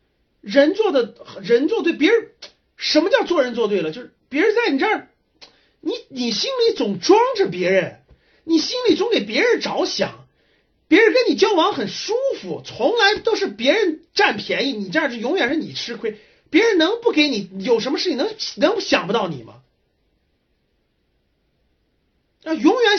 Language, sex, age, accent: Chinese, male, 30-49, native